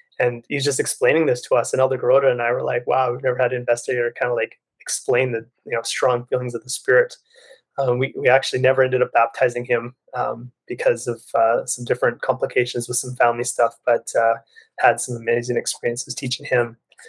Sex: male